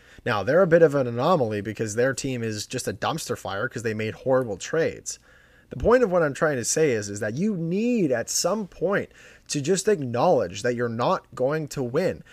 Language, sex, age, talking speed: English, male, 30-49, 220 wpm